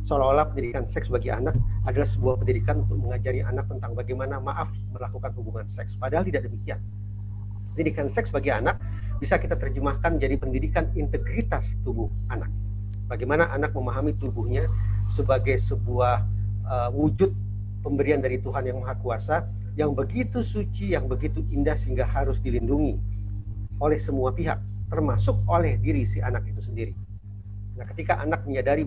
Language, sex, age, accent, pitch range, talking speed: Indonesian, male, 40-59, native, 100-105 Hz, 145 wpm